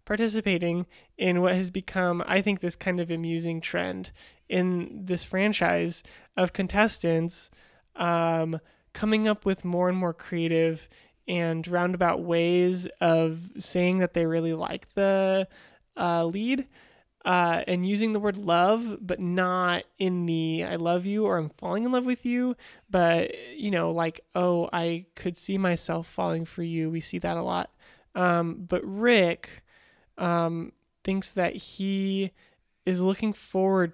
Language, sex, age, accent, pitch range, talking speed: English, male, 20-39, American, 170-195 Hz, 150 wpm